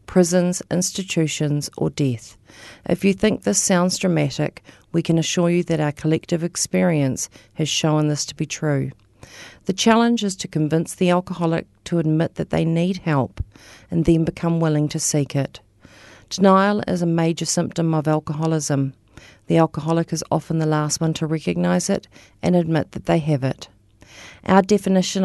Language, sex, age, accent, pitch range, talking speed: English, female, 40-59, Australian, 145-175 Hz, 165 wpm